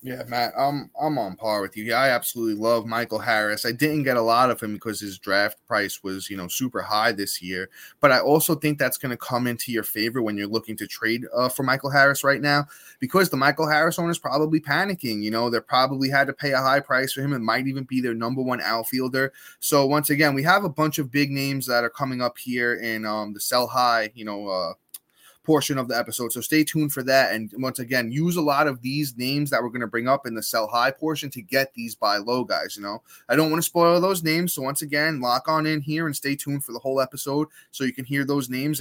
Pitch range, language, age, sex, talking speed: 125-155 Hz, English, 20-39, male, 260 wpm